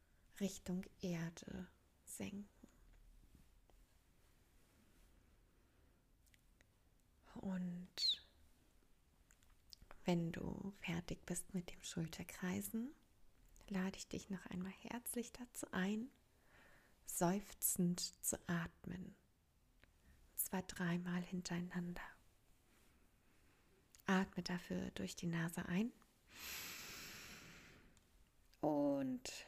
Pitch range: 180-230 Hz